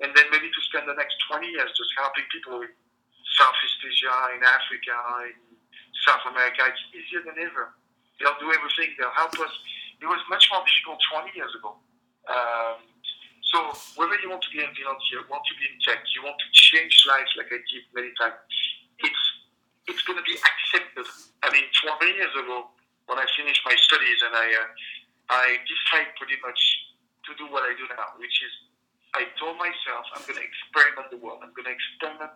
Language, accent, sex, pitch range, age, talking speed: English, French, male, 120-150 Hz, 50-69, 190 wpm